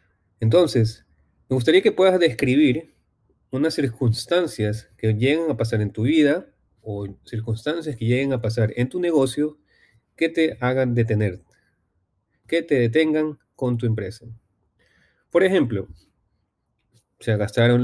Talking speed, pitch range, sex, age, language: 130 wpm, 105-125 Hz, male, 30-49, Spanish